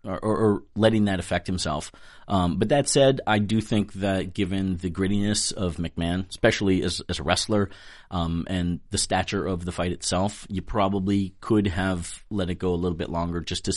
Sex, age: male, 30-49